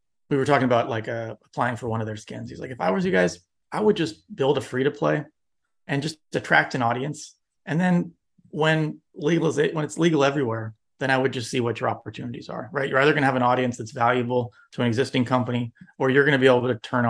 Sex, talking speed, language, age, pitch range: male, 255 wpm, English, 30-49, 115-135 Hz